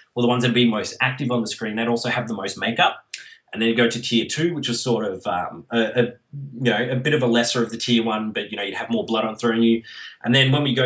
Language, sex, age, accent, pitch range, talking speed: English, male, 20-39, Australian, 115-130 Hz, 310 wpm